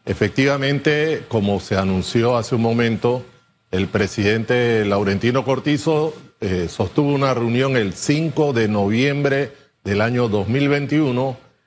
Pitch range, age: 110-145 Hz, 50-69